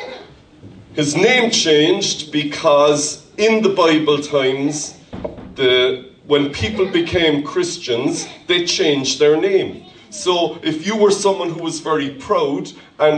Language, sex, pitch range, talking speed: English, male, 140-195 Hz, 120 wpm